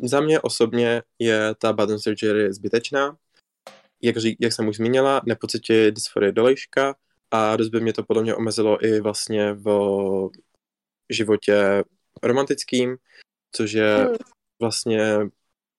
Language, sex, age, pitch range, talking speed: Czech, male, 20-39, 105-120 Hz, 120 wpm